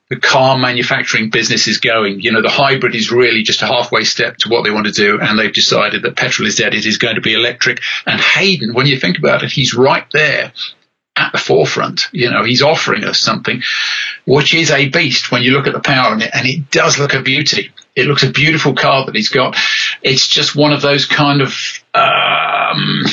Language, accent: English, British